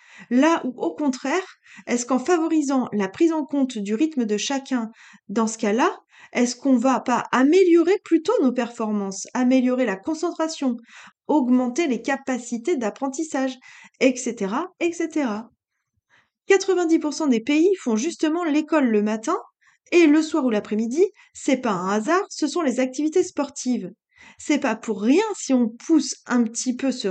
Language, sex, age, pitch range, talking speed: French, female, 20-39, 235-320 Hz, 155 wpm